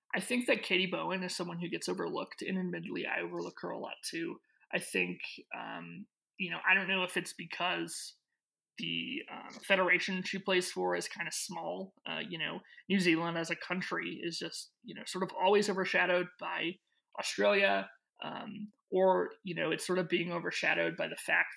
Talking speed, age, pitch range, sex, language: 190 wpm, 20-39, 120-200 Hz, male, English